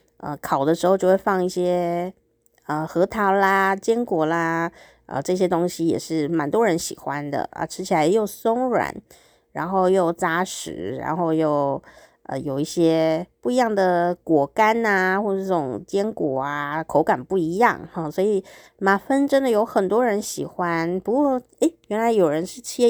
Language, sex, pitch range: Chinese, female, 165-215 Hz